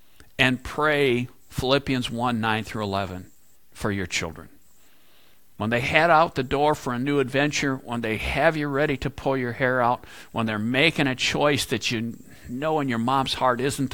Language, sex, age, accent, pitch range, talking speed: English, male, 50-69, American, 110-140 Hz, 185 wpm